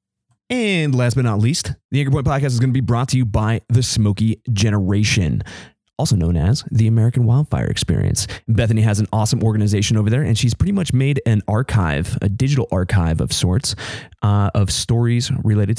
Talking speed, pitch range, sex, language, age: 190 wpm, 100-120 Hz, male, English, 20-39